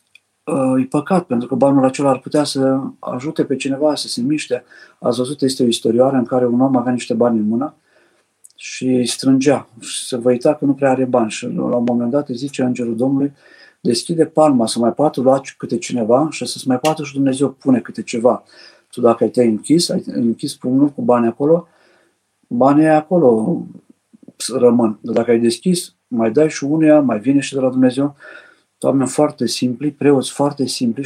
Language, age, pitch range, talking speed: Romanian, 50-69, 120-145 Hz, 190 wpm